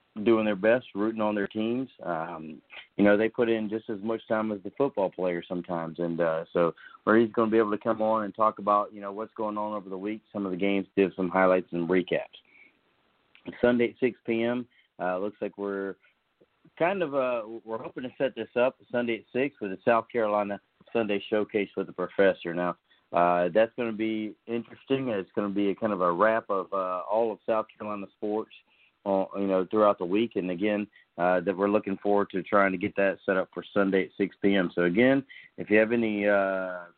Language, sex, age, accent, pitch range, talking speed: English, male, 40-59, American, 100-115 Hz, 225 wpm